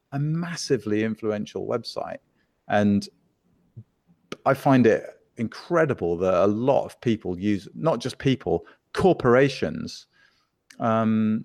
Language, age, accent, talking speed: English, 40-59, British, 105 wpm